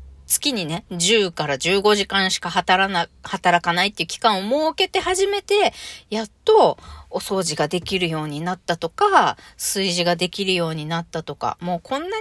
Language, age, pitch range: Japanese, 40-59, 175-260 Hz